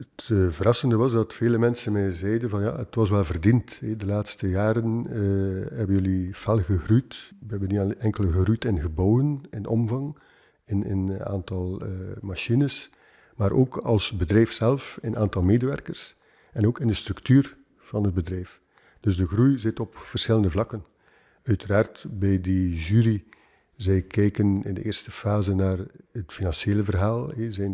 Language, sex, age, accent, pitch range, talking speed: Dutch, male, 50-69, Dutch, 100-115 Hz, 165 wpm